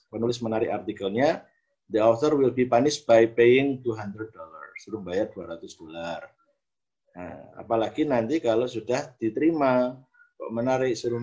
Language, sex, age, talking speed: Indonesian, male, 50-69, 130 wpm